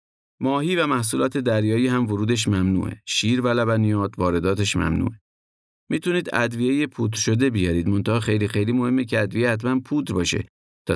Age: 50-69